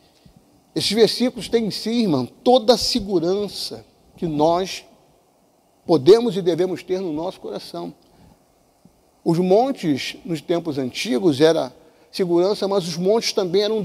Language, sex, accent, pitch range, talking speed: Portuguese, male, Brazilian, 165-230 Hz, 135 wpm